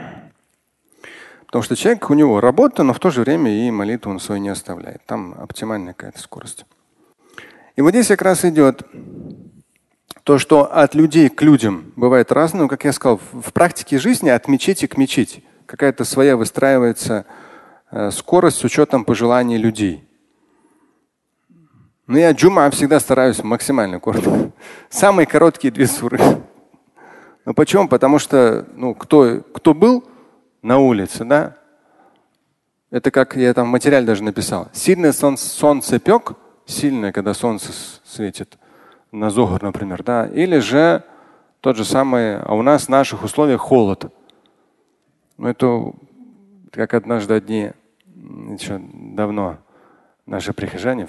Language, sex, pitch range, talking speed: Russian, male, 110-150 Hz, 135 wpm